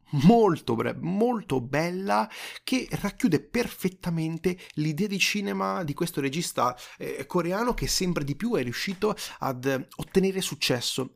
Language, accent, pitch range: Italian, native, 120-160 Hz